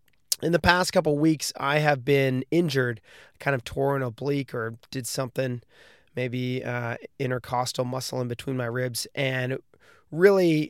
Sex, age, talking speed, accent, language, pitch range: male, 20-39, 145 wpm, American, English, 125-150 Hz